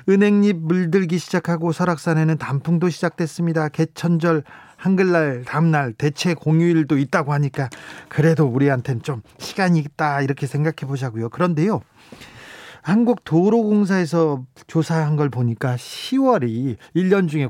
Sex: male